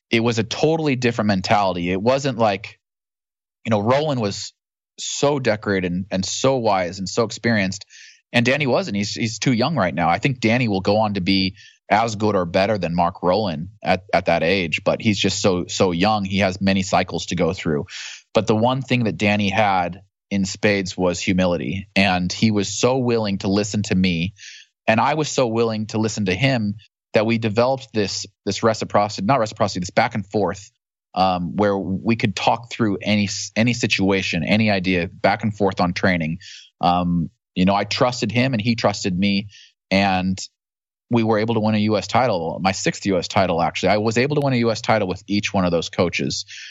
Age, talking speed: 20-39, 205 wpm